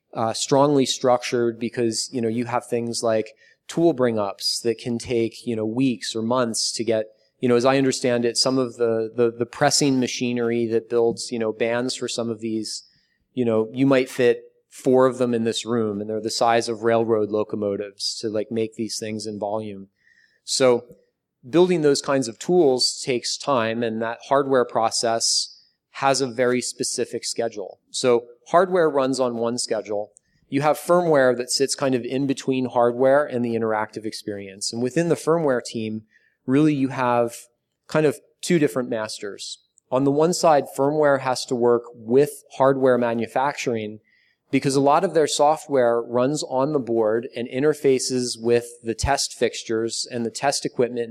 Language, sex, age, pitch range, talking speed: English, male, 30-49, 115-135 Hz, 175 wpm